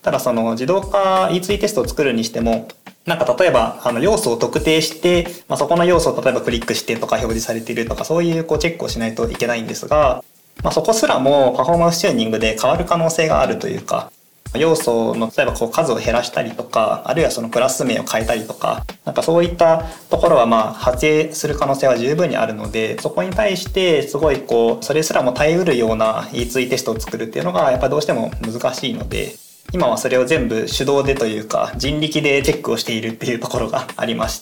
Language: Japanese